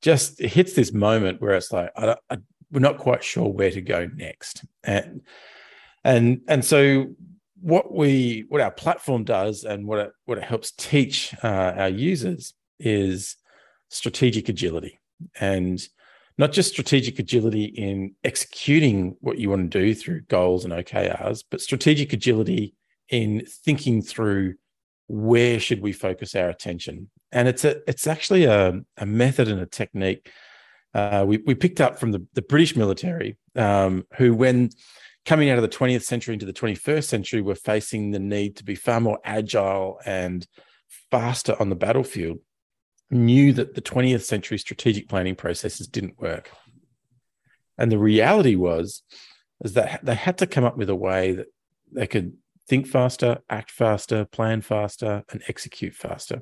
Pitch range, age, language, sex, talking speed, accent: 100-135 Hz, 40-59, English, male, 165 wpm, Australian